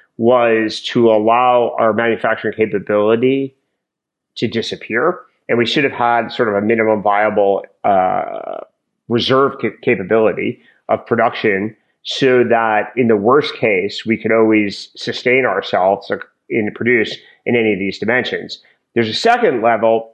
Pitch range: 105-125 Hz